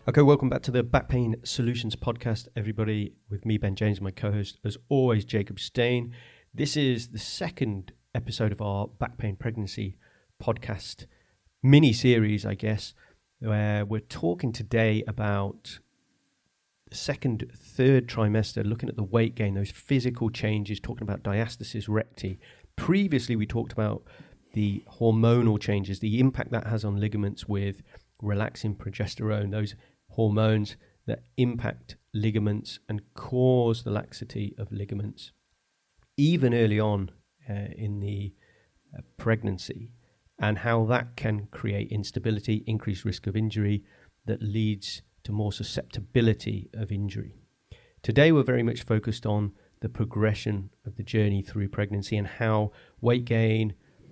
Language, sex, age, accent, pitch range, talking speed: English, male, 30-49, British, 105-120 Hz, 135 wpm